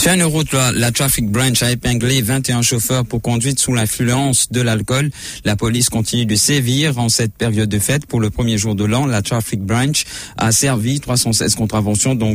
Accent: French